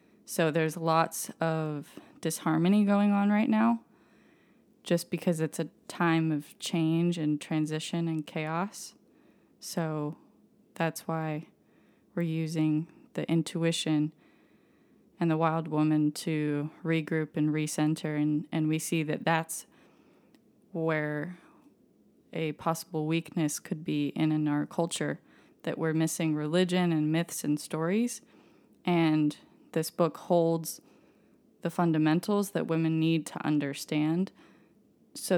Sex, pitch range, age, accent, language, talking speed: female, 155-170 Hz, 20-39, American, English, 120 wpm